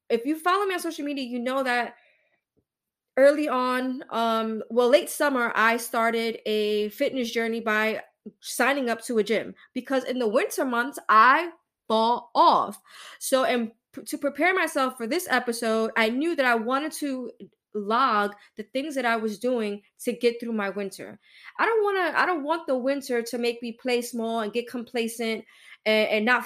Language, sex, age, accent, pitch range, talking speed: English, female, 20-39, American, 225-280 Hz, 185 wpm